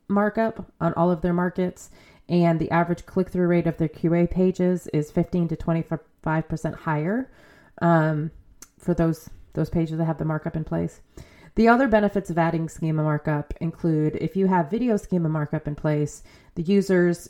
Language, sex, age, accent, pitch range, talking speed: English, female, 30-49, American, 155-185 Hz, 175 wpm